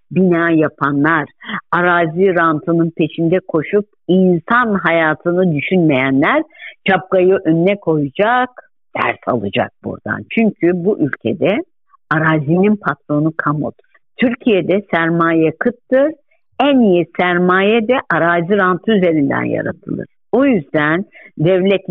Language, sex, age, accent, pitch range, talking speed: Turkish, female, 60-79, native, 160-230 Hz, 95 wpm